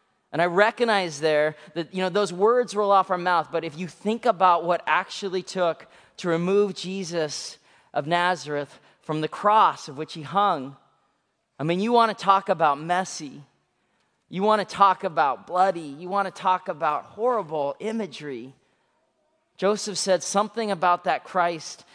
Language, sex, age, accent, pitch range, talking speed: English, male, 30-49, American, 165-205 Hz, 165 wpm